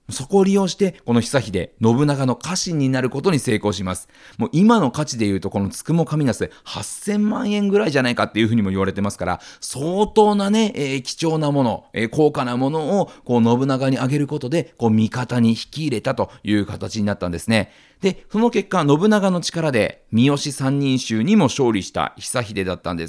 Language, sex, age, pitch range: Japanese, male, 40-59, 115-180 Hz